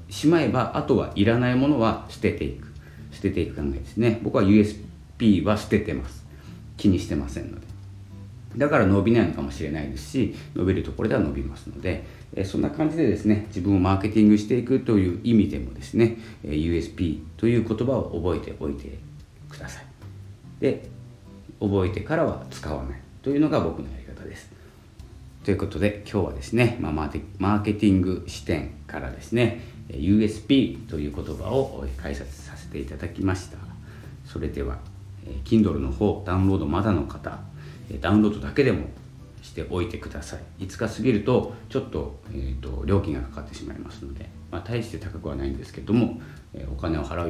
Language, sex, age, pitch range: Japanese, male, 40-59, 75-110 Hz